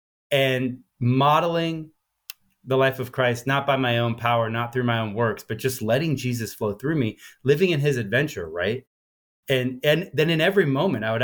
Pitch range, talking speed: 115-145 Hz, 190 wpm